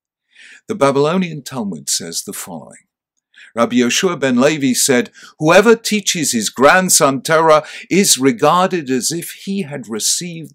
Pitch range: 135-200 Hz